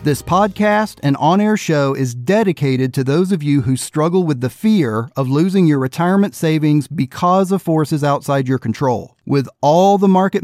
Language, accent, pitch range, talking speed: English, American, 135-180 Hz, 180 wpm